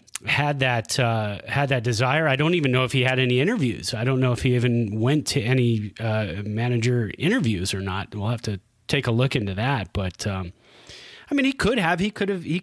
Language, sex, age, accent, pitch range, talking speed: English, male, 30-49, American, 110-140 Hz, 230 wpm